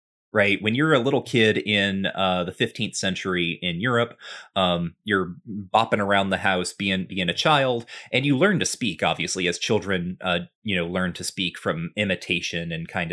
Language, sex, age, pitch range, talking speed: English, male, 30-49, 90-115 Hz, 190 wpm